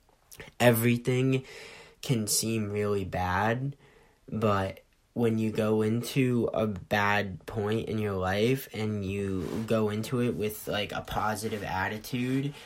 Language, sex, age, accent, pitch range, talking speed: English, male, 10-29, American, 100-115 Hz, 125 wpm